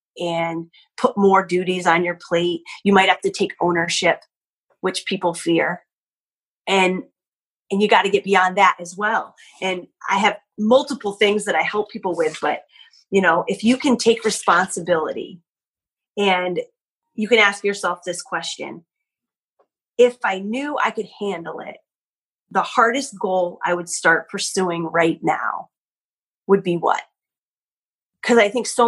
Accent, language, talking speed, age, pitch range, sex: American, English, 155 wpm, 30-49, 170-205 Hz, female